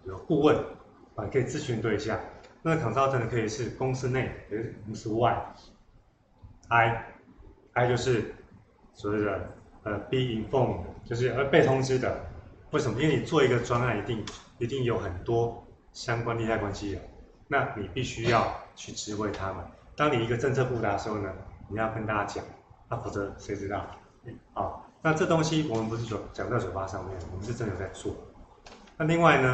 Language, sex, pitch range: Chinese, male, 100-120 Hz